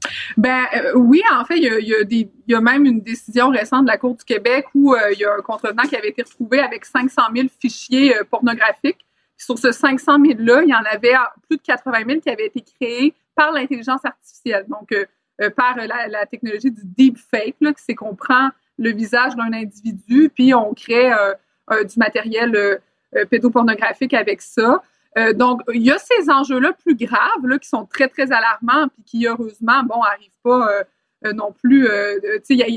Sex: female